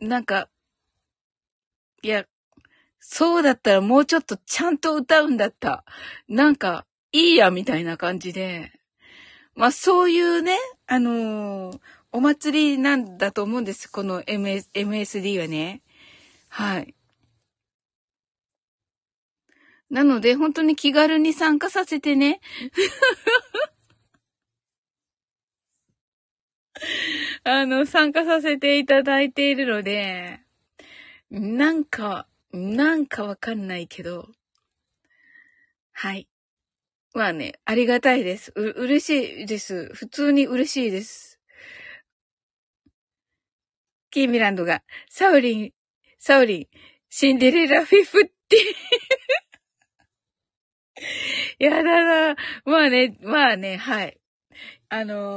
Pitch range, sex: 200-315 Hz, female